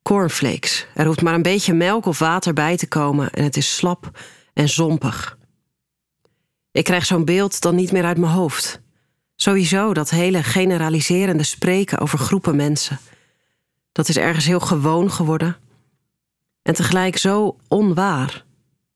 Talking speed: 145 wpm